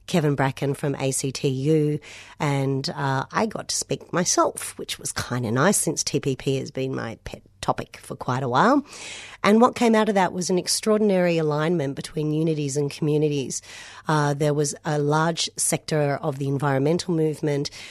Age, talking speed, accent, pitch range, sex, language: 40-59, 170 wpm, Australian, 140-165 Hz, female, English